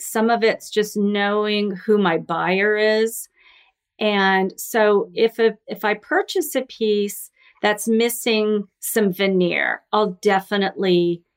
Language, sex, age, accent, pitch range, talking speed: English, female, 40-59, American, 190-230 Hz, 125 wpm